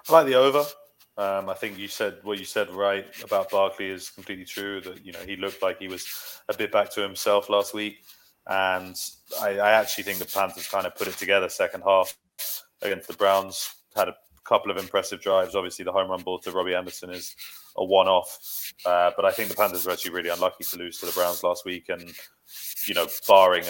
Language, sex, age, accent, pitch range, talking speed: English, male, 20-39, British, 90-105 Hz, 225 wpm